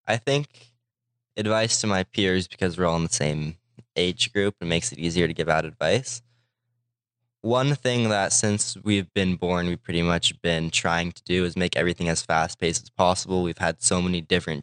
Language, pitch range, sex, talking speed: English, 90-120 Hz, male, 195 wpm